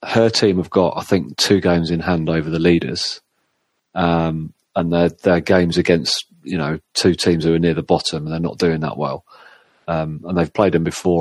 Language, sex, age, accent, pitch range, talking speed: English, male, 30-49, British, 80-90 Hz, 215 wpm